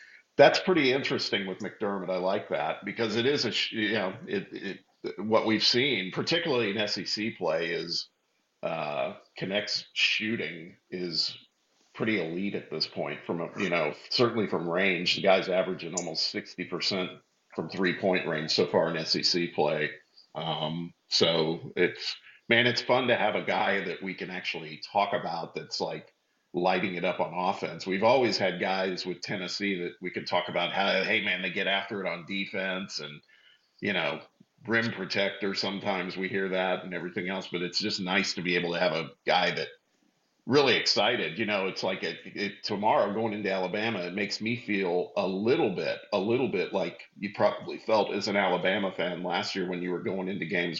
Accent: American